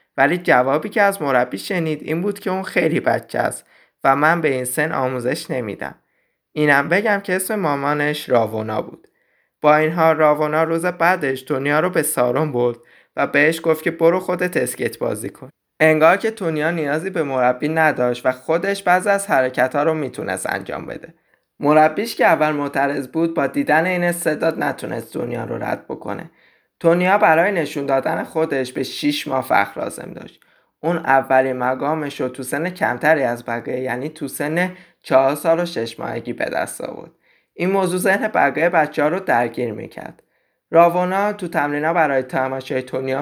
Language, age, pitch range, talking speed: Persian, 20-39, 130-170 Hz, 165 wpm